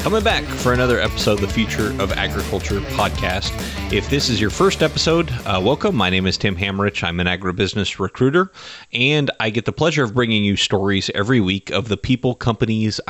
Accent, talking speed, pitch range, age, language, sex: American, 195 wpm, 95-120 Hz, 30-49, English, male